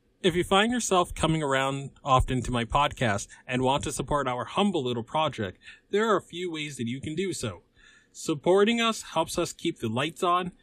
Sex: male